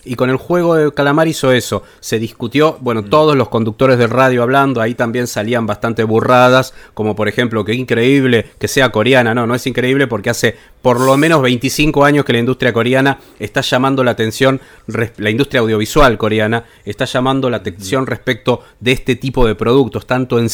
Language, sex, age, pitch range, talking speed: Spanish, male, 30-49, 120-150 Hz, 190 wpm